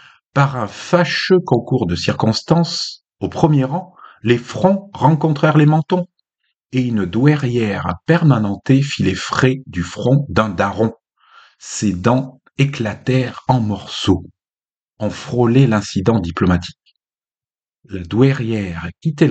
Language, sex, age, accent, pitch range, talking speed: French, male, 50-69, French, 105-160 Hz, 115 wpm